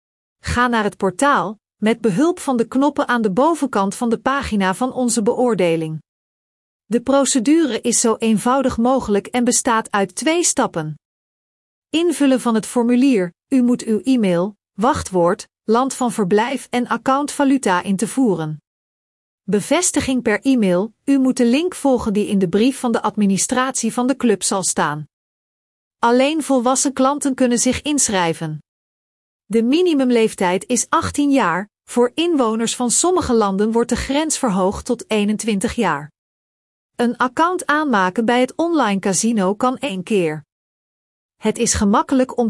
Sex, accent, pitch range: female, Dutch, 200-265 Hz